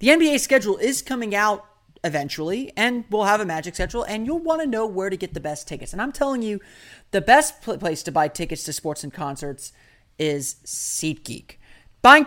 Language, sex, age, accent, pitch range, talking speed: English, male, 30-49, American, 160-225 Hz, 200 wpm